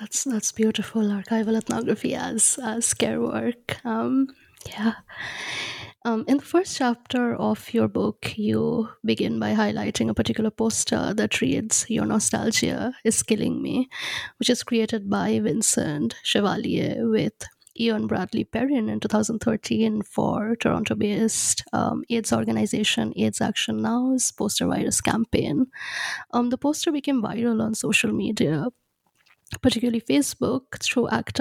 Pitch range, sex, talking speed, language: 220-255 Hz, female, 130 wpm, English